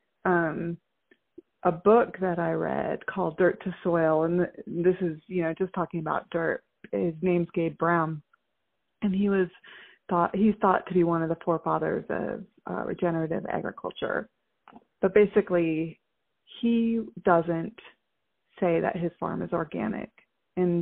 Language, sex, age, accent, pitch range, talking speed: English, female, 30-49, American, 165-185 Hz, 145 wpm